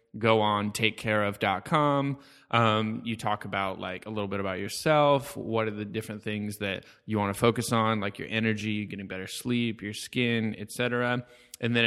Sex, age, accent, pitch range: male, 20-39, American, 105-120 Hz